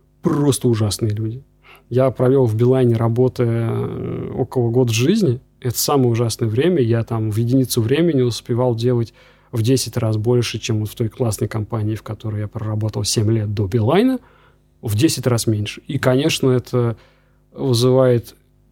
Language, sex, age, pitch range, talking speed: Russian, male, 20-39, 115-135 Hz, 155 wpm